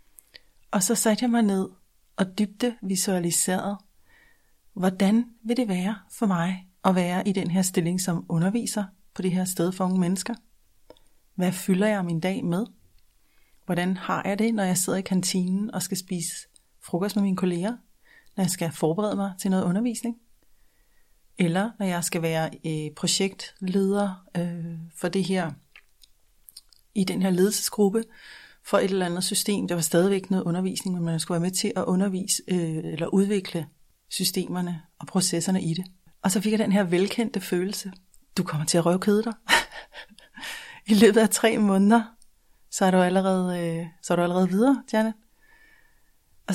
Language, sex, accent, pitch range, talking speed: Danish, female, native, 180-215 Hz, 170 wpm